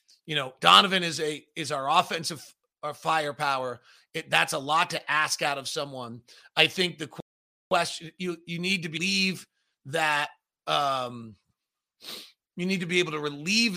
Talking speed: 160 wpm